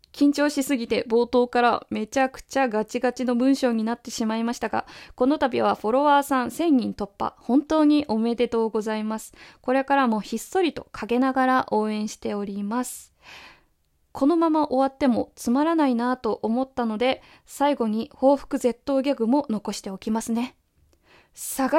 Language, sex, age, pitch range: Japanese, female, 20-39, 220-275 Hz